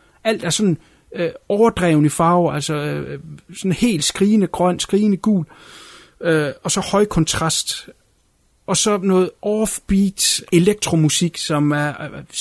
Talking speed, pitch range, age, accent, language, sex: 130 wpm, 155-200 Hz, 30-49, native, Danish, male